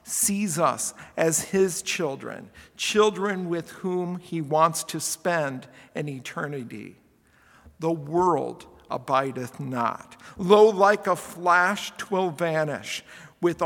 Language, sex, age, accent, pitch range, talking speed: English, male, 50-69, American, 155-190 Hz, 110 wpm